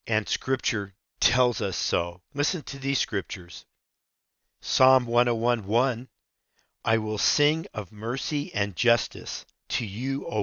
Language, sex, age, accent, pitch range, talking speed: English, male, 50-69, American, 100-125 Hz, 120 wpm